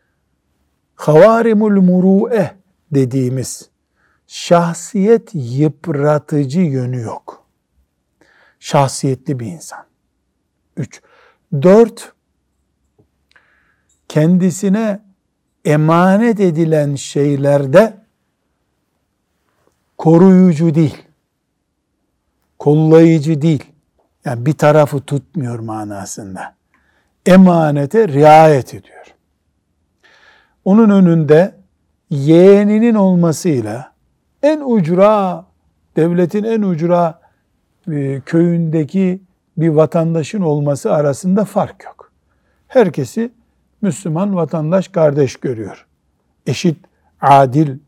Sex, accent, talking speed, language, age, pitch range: male, native, 65 wpm, Turkish, 60-79, 140-185 Hz